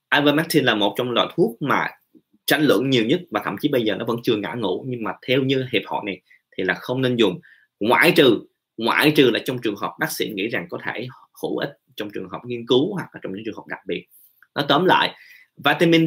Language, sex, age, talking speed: Vietnamese, male, 20-39, 245 wpm